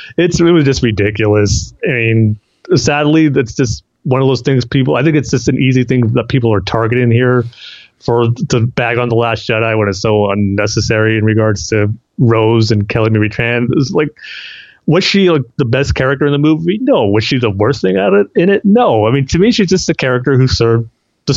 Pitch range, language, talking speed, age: 110-140 Hz, English, 220 wpm, 30-49